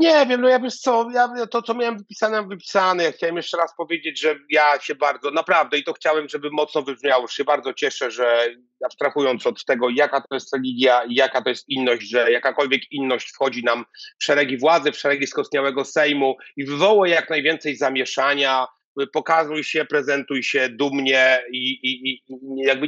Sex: male